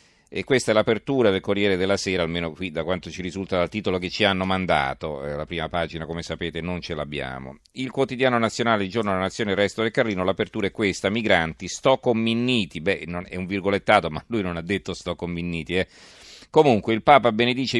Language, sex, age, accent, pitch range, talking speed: Italian, male, 40-59, native, 95-120 Hz, 200 wpm